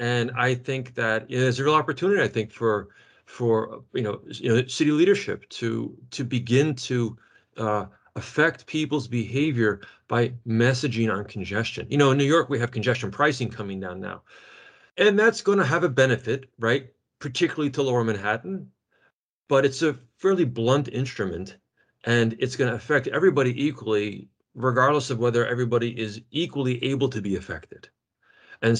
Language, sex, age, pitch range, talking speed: English, male, 40-59, 115-145 Hz, 160 wpm